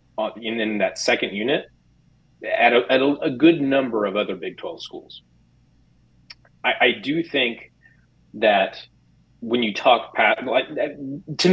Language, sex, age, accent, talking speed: English, male, 30-49, American, 135 wpm